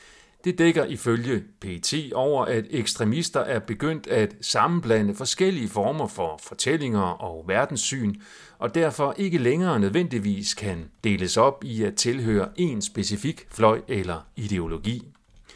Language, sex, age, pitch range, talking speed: Danish, male, 40-59, 100-135 Hz, 125 wpm